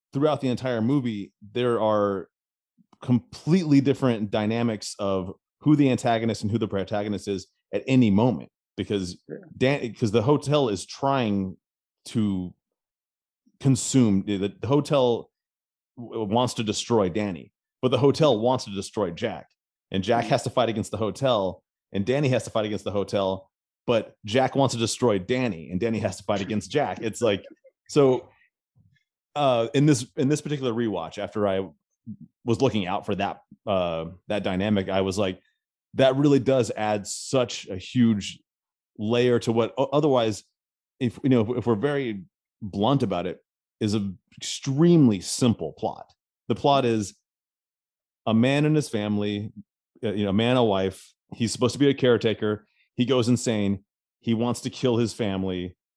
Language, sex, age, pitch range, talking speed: English, male, 30-49, 100-130 Hz, 160 wpm